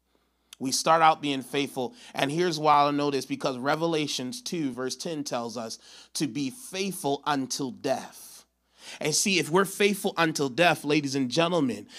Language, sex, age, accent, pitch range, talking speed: English, male, 30-49, American, 135-195 Hz, 165 wpm